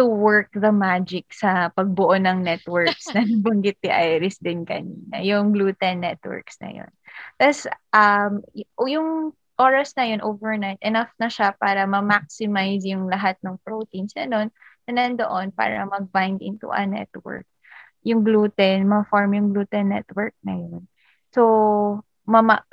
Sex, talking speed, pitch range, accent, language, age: female, 145 wpm, 195-230 Hz, native, Filipino, 20-39